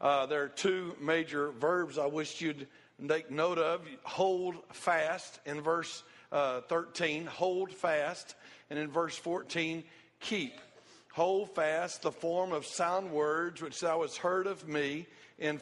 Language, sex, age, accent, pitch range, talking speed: English, male, 50-69, American, 155-185 Hz, 150 wpm